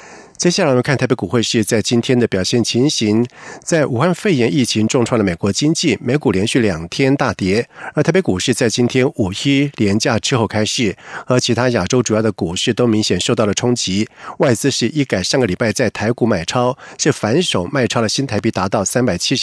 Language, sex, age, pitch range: German, male, 50-69, 110-140 Hz